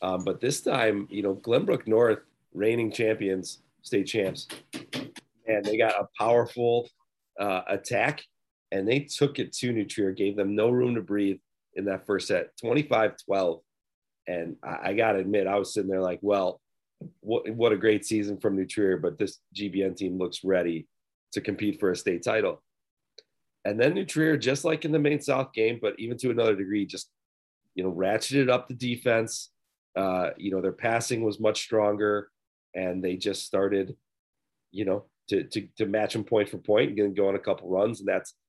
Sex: male